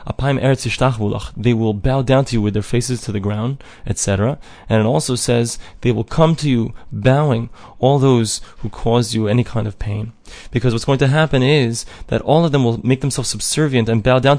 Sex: male